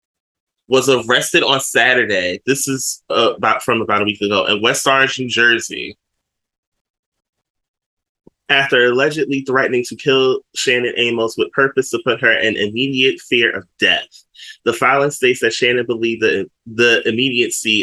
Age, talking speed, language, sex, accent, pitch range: 20-39, 150 wpm, English, male, American, 110-130 Hz